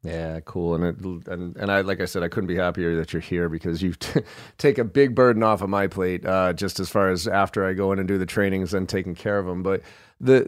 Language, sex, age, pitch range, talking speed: English, male, 40-59, 90-125 Hz, 275 wpm